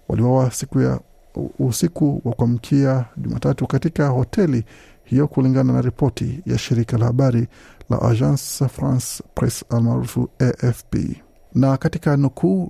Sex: male